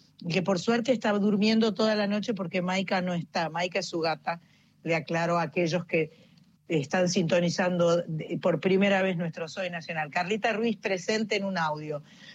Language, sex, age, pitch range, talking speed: Spanish, female, 40-59, 180-245 Hz, 170 wpm